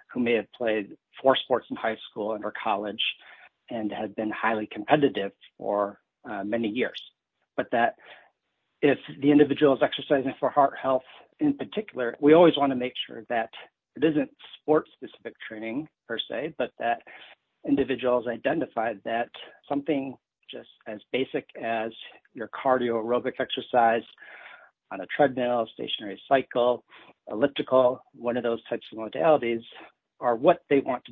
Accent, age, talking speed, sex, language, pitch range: American, 50-69, 150 wpm, male, English, 115-140 Hz